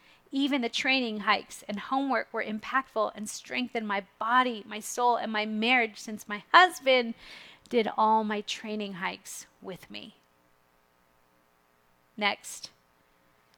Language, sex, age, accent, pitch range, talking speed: English, female, 40-59, American, 205-250 Hz, 125 wpm